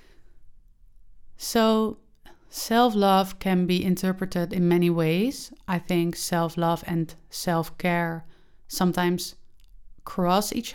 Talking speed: 90 wpm